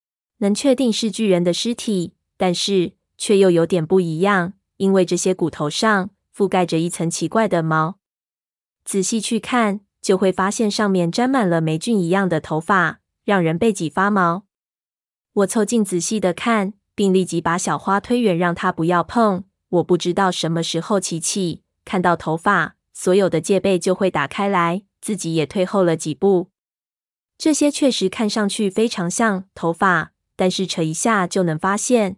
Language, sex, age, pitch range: Chinese, female, 20-39, 170-205 Hz